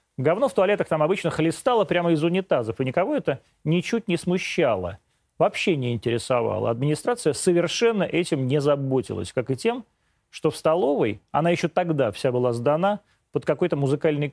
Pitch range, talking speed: 125-175 Hz, 160 wpm